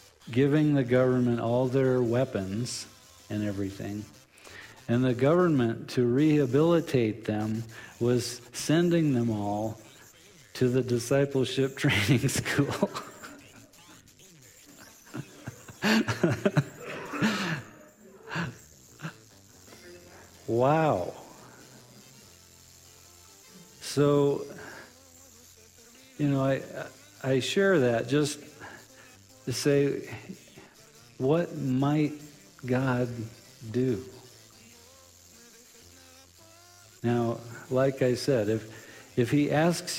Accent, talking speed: American, 70 wpm